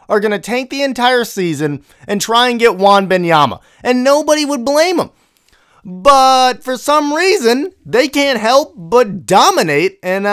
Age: 30-49